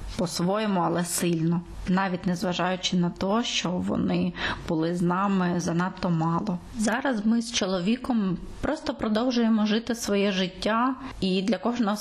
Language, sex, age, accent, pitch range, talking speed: Ukrainian, female, 20-39, native, 190-230 Hz, 135 wpm